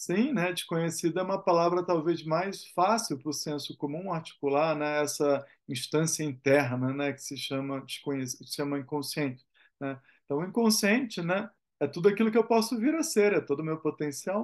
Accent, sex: Brazilian, male